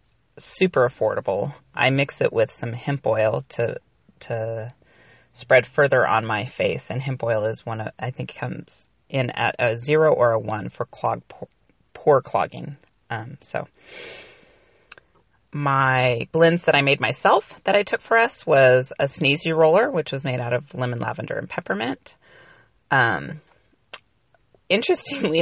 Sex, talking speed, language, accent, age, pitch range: female, 150 wpm, English, American, 30-49, 125-170 Hz